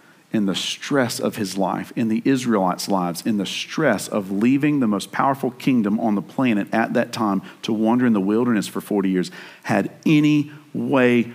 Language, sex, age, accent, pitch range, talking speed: English, male, 50-69, American, 100-120 Hz, 190 wpm